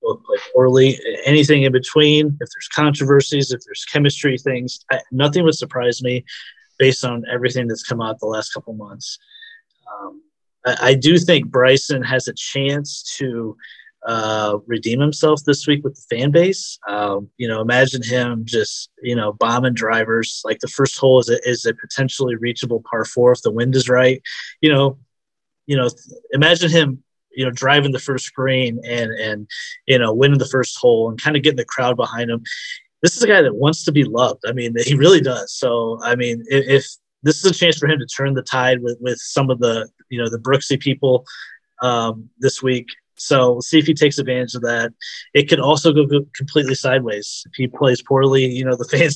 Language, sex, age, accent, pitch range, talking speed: English, male, 30-49, American, 120-145 Hz, 205 wpm